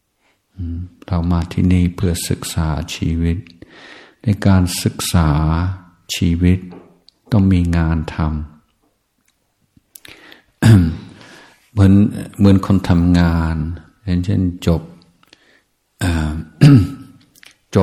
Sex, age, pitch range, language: male, 60-79, 80-90 Hz, Thai